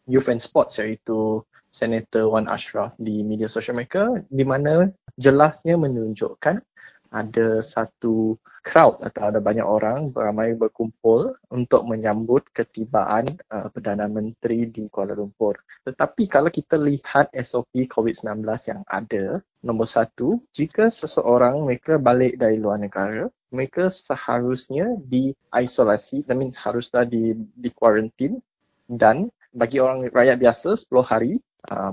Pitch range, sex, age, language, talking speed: 115-140 Hz, male, 20-39, English, 125 wpm